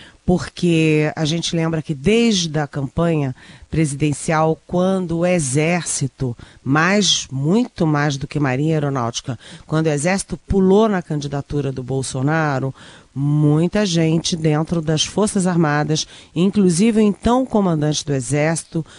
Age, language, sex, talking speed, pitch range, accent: 40-59, Portuguese, female, 125 wpm, 145-190 Hz, Brazilian